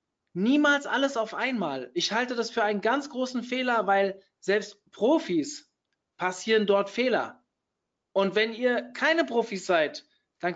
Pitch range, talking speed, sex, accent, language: 200-245 Hz, 140 wpm, male, German, German